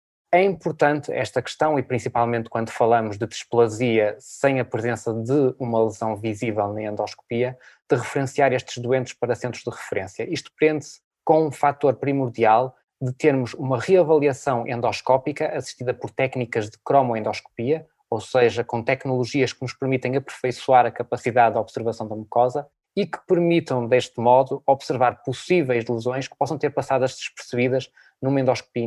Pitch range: 120-145 Hz